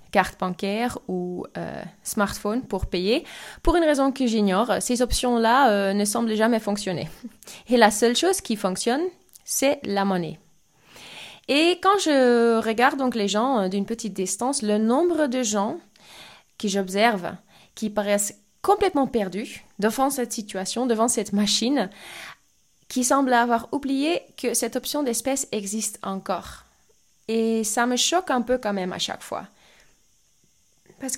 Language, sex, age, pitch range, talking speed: French, female, 20-39, 205-255 Hz, 150 wpm